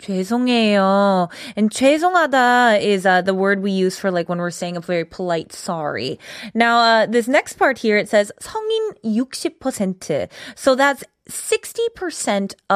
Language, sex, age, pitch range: Korean, female, 20-39, 185-285 Hz